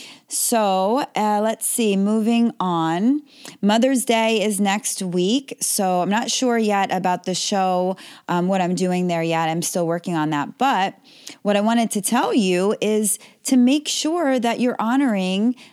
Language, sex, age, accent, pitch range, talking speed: English, female, 20-39, American, 170-220 Hz, 170 wpm